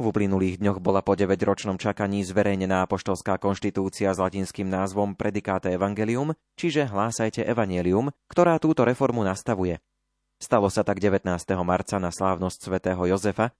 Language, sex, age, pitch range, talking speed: Slovak, male, 30-49, 95-120 Hz, 135 wpm